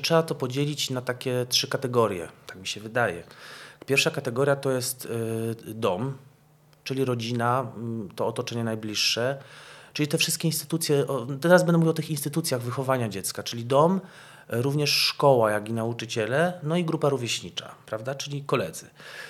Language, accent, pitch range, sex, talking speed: Polish, native, 115-145 Hz, male, 145 wpm